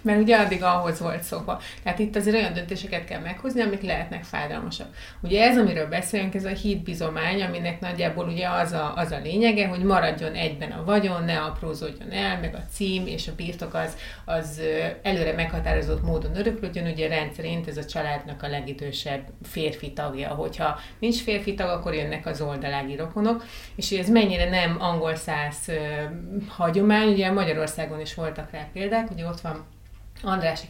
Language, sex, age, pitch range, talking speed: Hungarian, female, 30-49, 160-205 Hz, 170 wpm